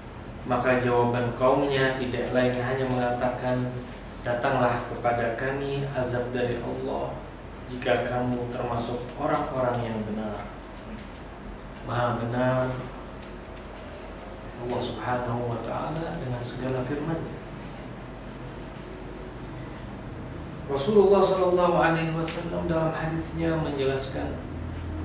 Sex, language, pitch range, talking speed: male, Indonesian, 115-145 Hz, 85 wpm